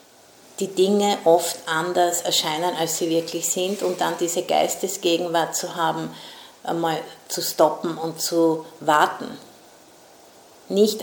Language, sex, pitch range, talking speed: English, female, 170-195 Hz, 120 wpm